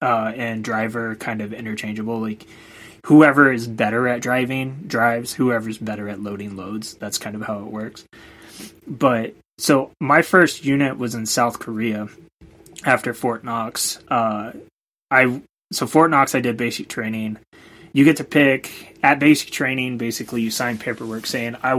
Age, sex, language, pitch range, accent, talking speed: 20-39, male, English, 110-130 Hz, American, 160 wpm